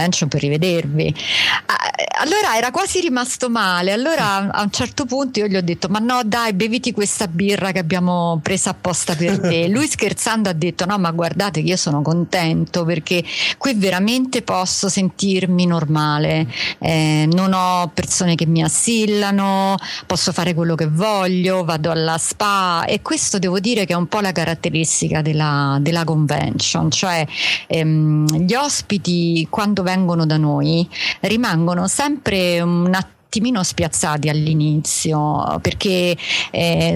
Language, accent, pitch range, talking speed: Italian, native, 165-205 Hz, 145 wpm